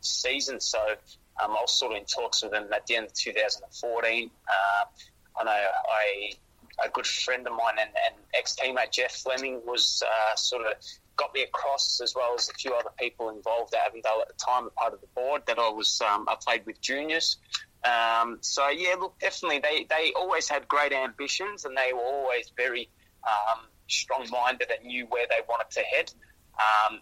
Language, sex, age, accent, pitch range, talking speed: English, male, 20-39, Australian, 110-140 Hz, 200 wpm